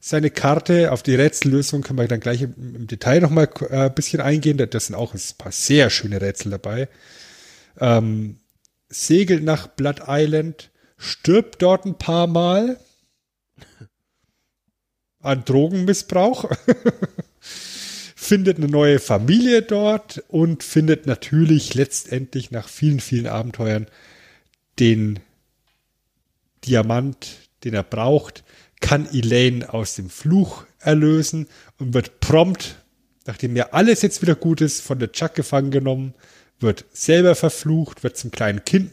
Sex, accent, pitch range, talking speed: male, German, 125-165 Hz, 135 wpm